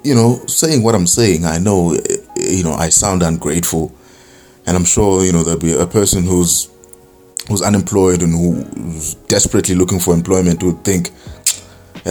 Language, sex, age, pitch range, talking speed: English, male, 20-39, 85-100 Hz, 175 wpm